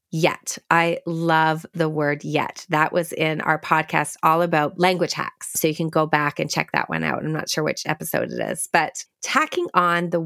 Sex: female